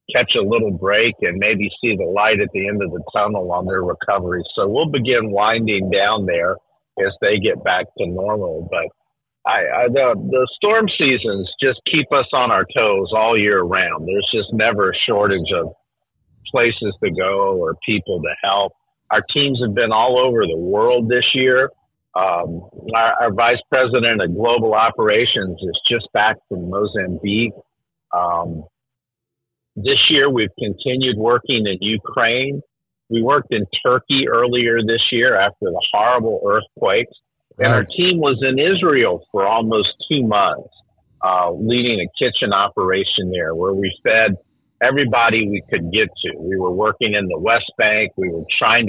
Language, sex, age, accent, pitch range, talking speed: English, male, 50-69, American, 100-130 Hz, 160 wpm